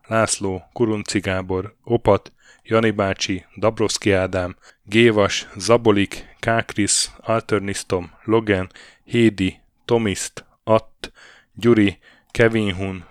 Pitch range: 95-115 Hz